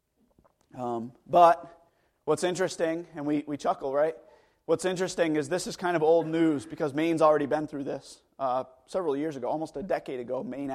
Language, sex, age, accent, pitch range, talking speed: English, male, 30-49, American, 145-205 Hz, 185 wpm